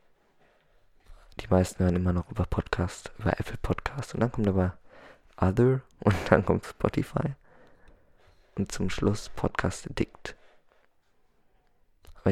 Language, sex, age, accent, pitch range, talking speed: German, male, 20-39, German, 90-105 Hz, 120 wpm